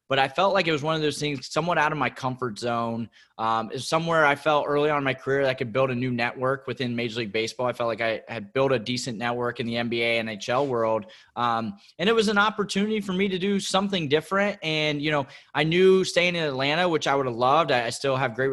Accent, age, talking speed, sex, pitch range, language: American, 20-39, 260 wpm, male, 115-145 Hz, English